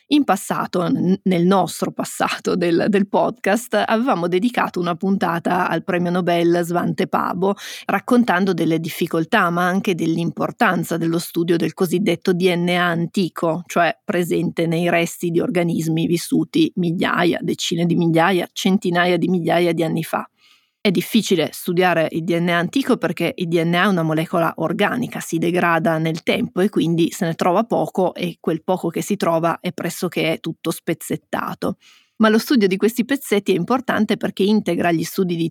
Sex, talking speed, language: female, 155 wpm, Italian